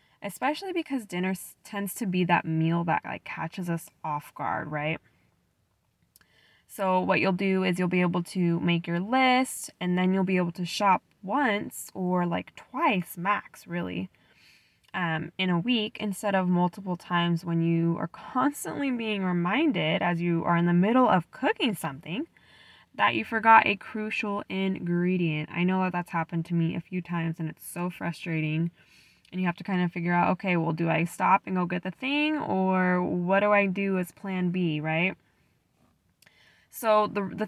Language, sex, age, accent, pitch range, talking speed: English, female, 10-29, American, 165-195 Hz, 180 wpm